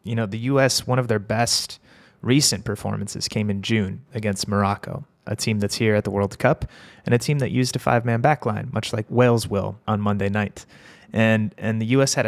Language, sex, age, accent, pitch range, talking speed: English, male, 30-49, American, 105-120 Hz, 215 wpm